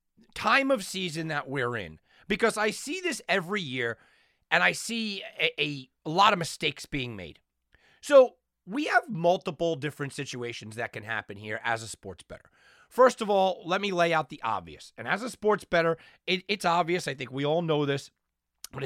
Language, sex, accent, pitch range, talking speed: English, male, American, 135-195 Hz, 190 wpm